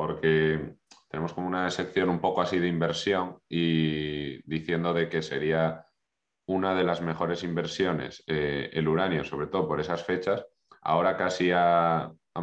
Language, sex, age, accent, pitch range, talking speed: Spanish, male, 30-49, Spanish, 80-90 Hz, 155 wpm